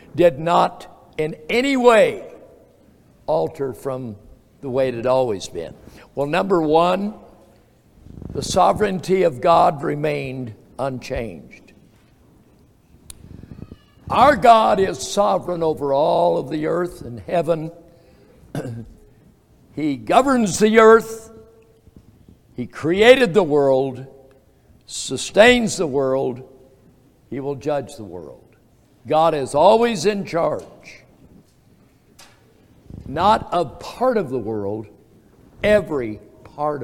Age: 60-79